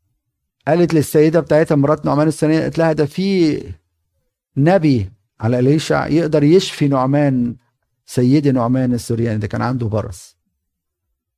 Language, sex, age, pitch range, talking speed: Arabic, male, 50-69, 115-160 Hz, 120 wpm